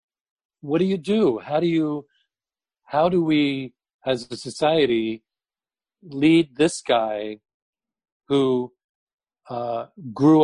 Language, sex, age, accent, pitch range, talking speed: English, male, 50-69, American, 125-155 Hz, 110 wpm